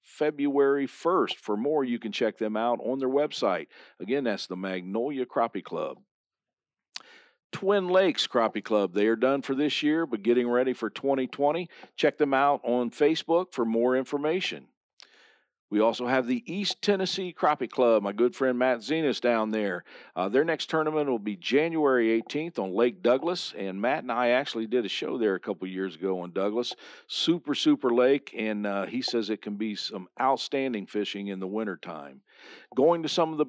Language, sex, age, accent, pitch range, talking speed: English, male, 50-69, American, 105-145 Hz, 185 wpm